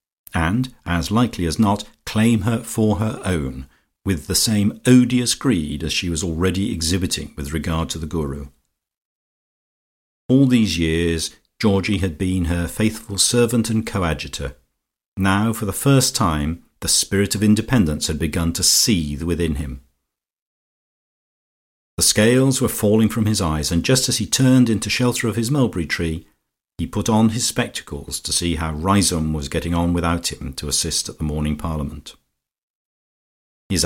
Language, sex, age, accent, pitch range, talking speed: English, male, 50-69, British, 80-105 Hz, 160 wpm